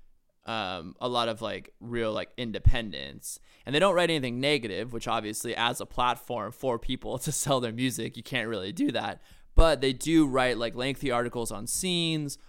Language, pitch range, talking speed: English, 115-140 Hz, 190 wpm